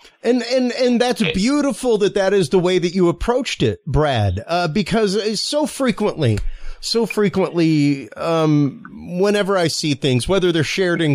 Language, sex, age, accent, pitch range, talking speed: English, male, 30-49, American, 135-190 Hz, 160 wpm